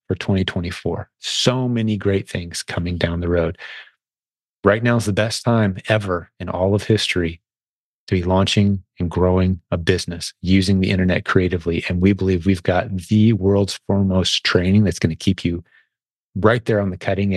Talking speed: 175 wpm